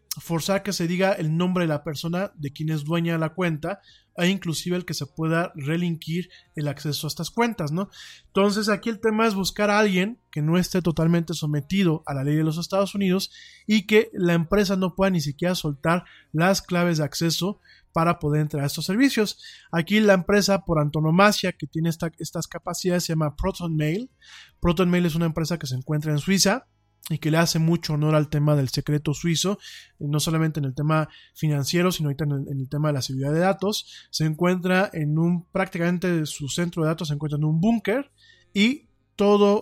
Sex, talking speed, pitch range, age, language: male, 205 wpm, 150-190 Hz, 20-39, Spanish